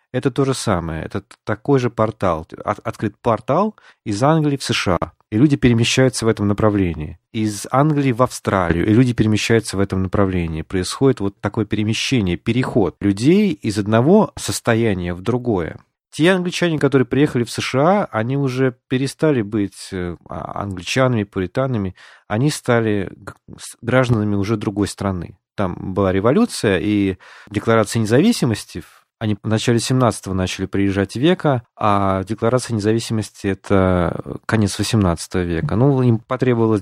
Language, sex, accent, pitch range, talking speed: Russian, male, native, 100-130 Hz, 135 wpm